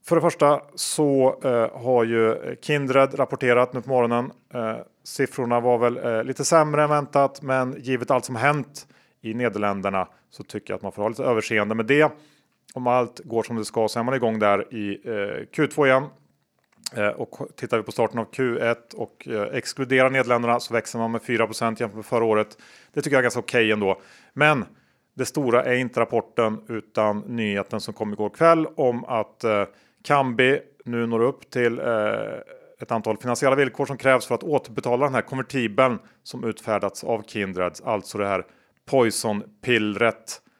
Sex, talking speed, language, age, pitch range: male, 170 wpm, Swedish, 30-49, 110-135 Hz